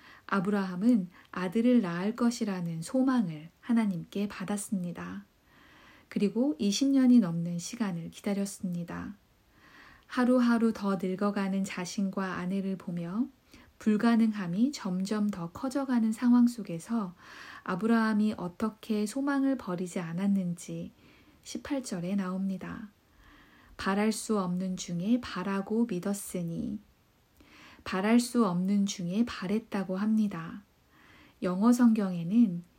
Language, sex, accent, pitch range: Korean, female, native, 185-240 Hz